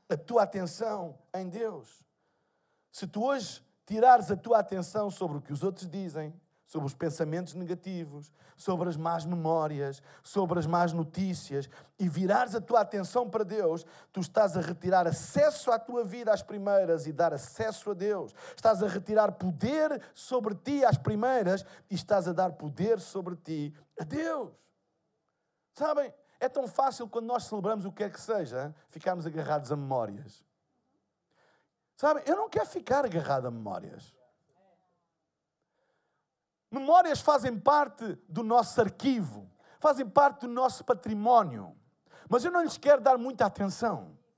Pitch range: 175-255 Hz